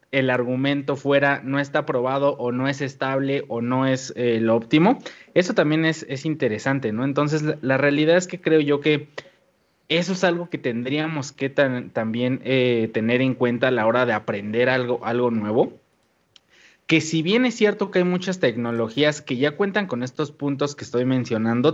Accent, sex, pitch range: Mexican, male, 125-160 Hz